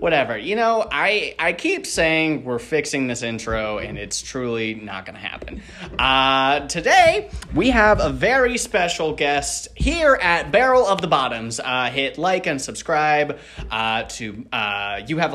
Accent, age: American, 30-49